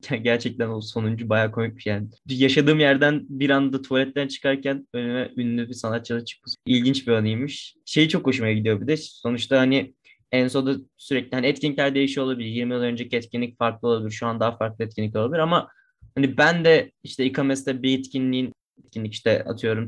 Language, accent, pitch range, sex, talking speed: Turkish, native, 120-140 Hz, male, 185 wpm